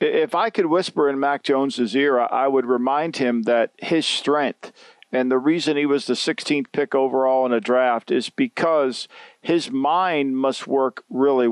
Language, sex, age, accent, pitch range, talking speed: English, male, 50-69, American, 135-185 Hz, 175 wpm